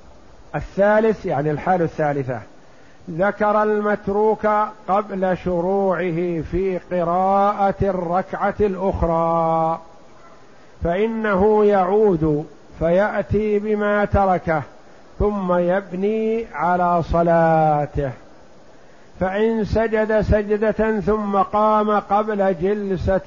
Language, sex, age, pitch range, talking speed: Arabic, male, 50-69, 170-210 Hz, 70 wpm